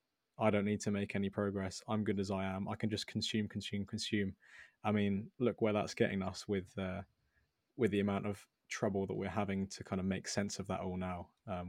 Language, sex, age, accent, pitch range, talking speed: English, male, 20-39, British, 100-125 Hz, 230 wpm